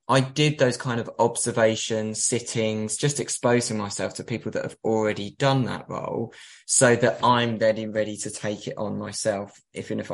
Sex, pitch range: male, 110-130 Hz